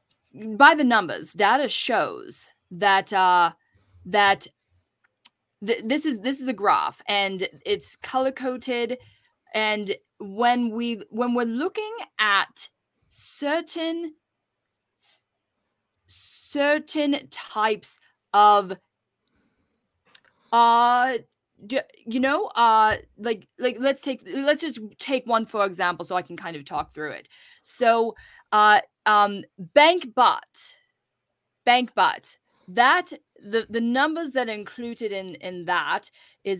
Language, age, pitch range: English, 20-39, 200-270 Hz